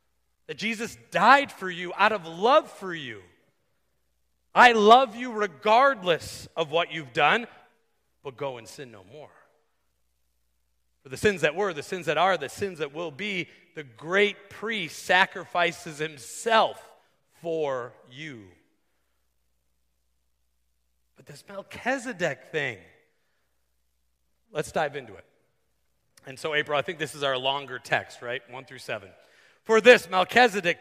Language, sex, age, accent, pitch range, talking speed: English, male, 40-59, American, 130-210 Hz, 135 wpm